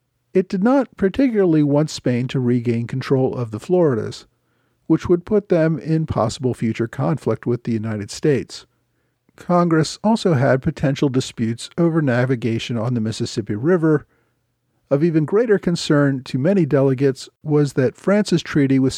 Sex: male